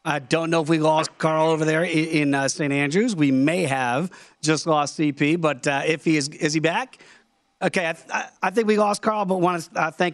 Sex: male